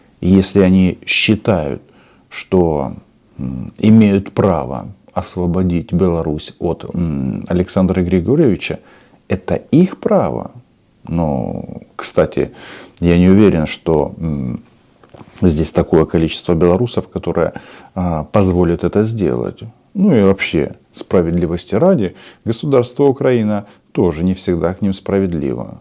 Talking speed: 95 wpm